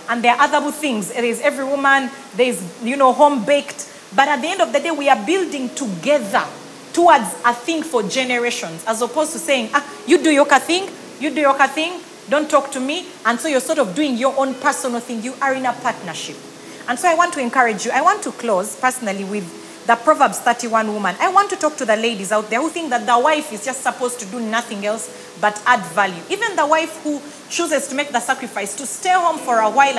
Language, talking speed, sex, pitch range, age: English, 235 wpm, female, 235-310 Hz, 30-49